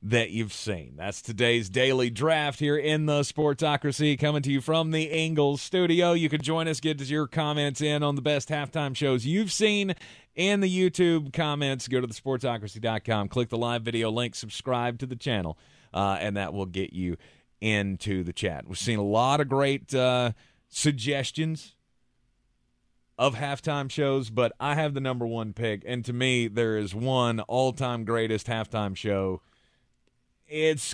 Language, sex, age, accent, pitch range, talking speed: English, male, 30-49, American, 110-150 Hz, 175 wpm